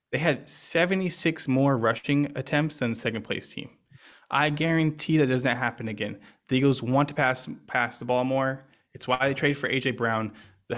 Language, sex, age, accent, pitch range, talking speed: English, male, 20-39, American, 125-150 Hz, 190 wpm